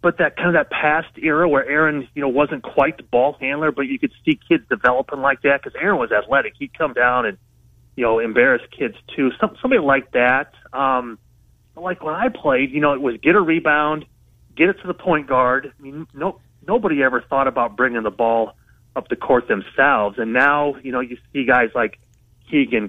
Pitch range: 120-155 Hz